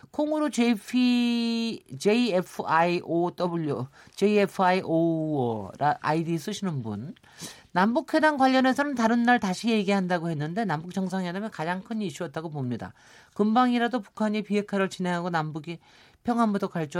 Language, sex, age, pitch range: Korean, male, 50-69, 150-220 Hz